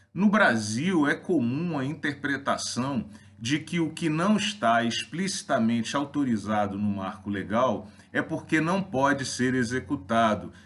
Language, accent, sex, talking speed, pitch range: Portuguese, Brazilian, male, 130 wpm, 110-155 Hz